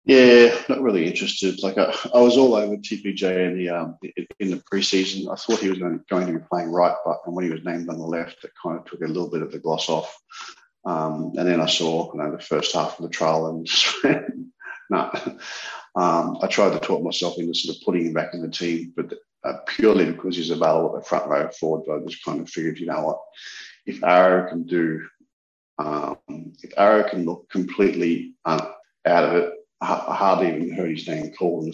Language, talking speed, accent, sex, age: English, 210 wpm, Australian, male, 40-59